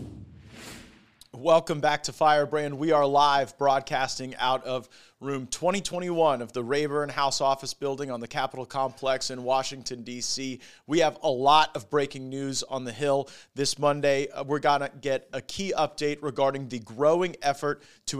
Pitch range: 130-150 Hz